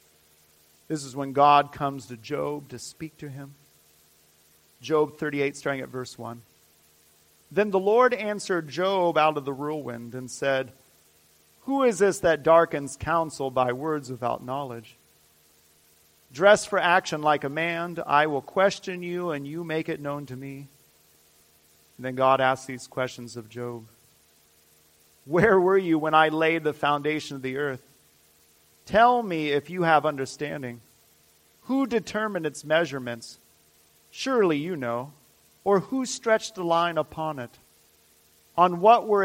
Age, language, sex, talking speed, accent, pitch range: 40-59, English, male, 150 wpm, American, 115-170 Hz